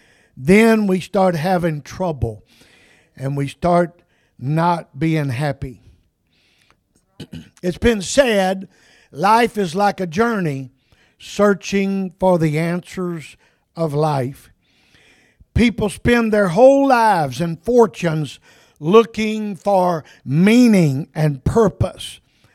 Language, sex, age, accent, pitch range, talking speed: English, male, 50-69, American, 155-215 Hz, 100 wpm